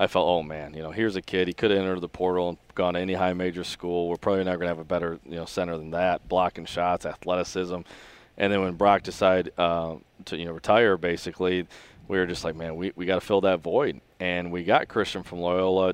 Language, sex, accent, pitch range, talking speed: English, male, American, 85-95 Hz, 240 wpm